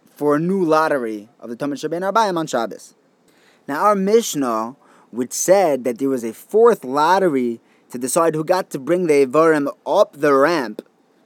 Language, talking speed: English, 175 wpm